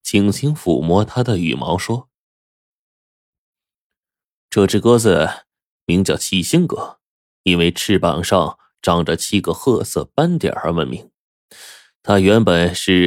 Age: 20-39